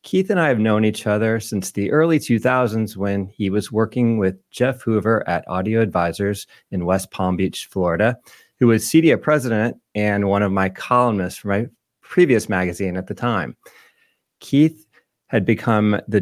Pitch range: 100-130 Hz